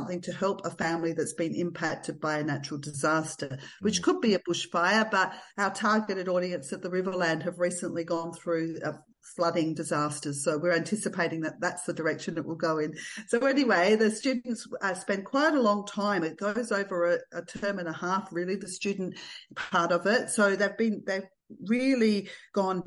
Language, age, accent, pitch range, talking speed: English, 50-69, Australian, 175-215 Hz, 185 wpm